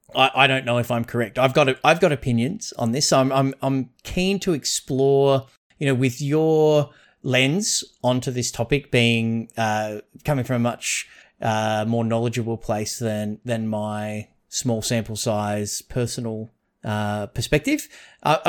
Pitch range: 115-145 Hz